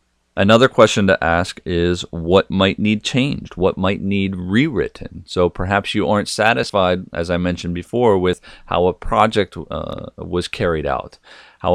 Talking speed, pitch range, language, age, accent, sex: 160 wpm, 85-105 Hz, English, 40-59, American, male